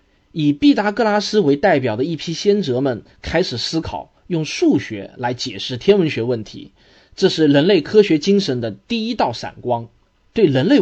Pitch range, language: 125-195 Hz, Chinese